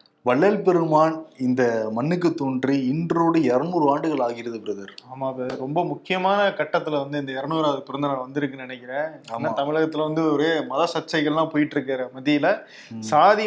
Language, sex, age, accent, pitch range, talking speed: Tamil, male, 20-39, native, 135-180 Hz, 115 wpm